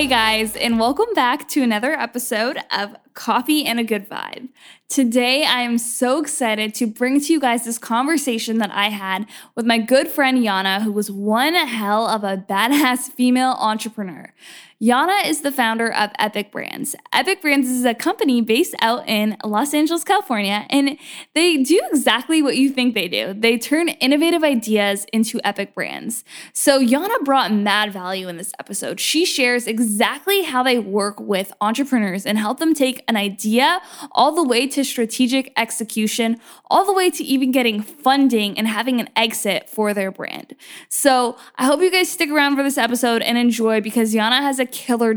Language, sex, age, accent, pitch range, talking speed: English, female, 10-29, American, 215-275 Hz, 180 wpm